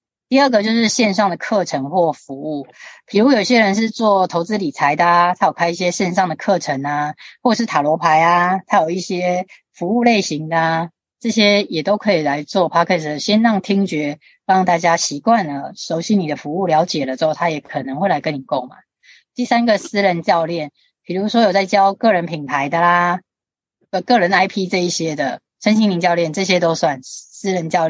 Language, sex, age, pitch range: Chinese, female, 20-39, 155-210 Hz